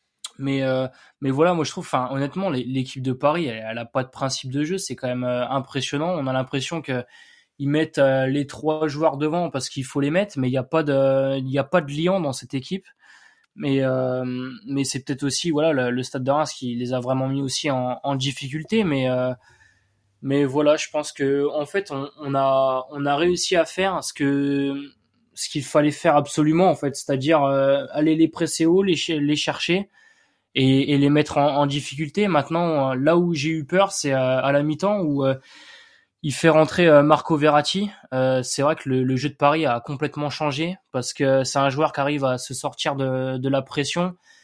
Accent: French